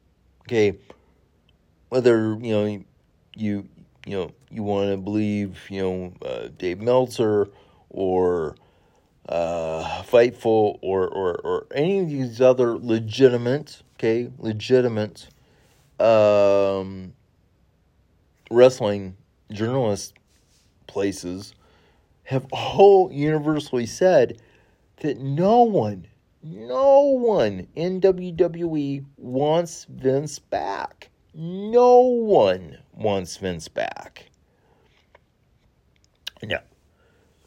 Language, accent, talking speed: English, American, 85 wpm